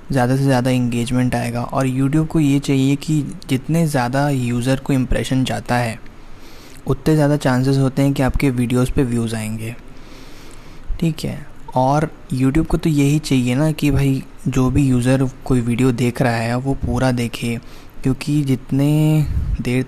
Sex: male